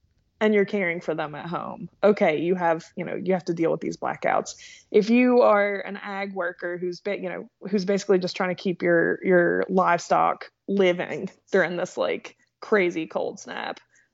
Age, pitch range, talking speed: 20-39, 180-215 Hz, 190 wpm